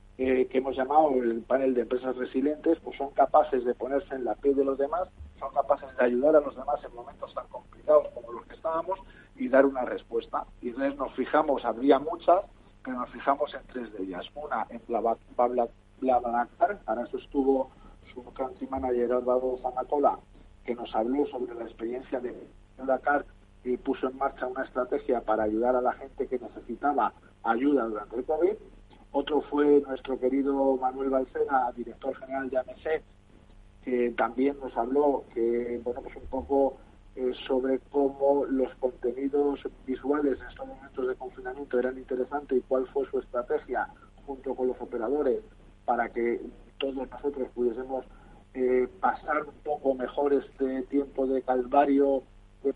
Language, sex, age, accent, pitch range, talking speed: Spanish, male, 40-59, Spanish, 125-140 Hz, 165 wpm